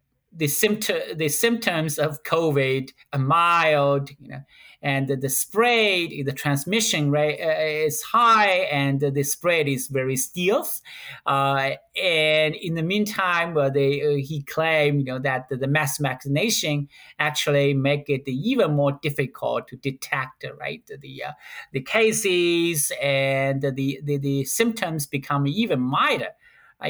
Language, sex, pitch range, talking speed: English, male, 140-185 Hz, 145 wpm